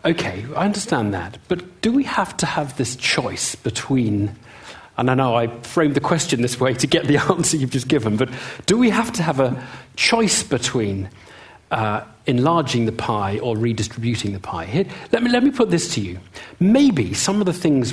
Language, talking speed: English, 195 wpm